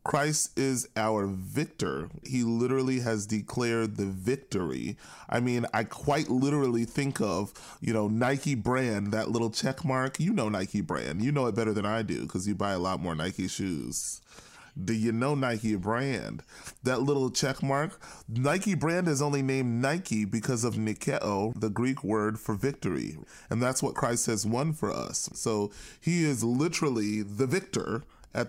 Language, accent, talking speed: English, American, 175 wpm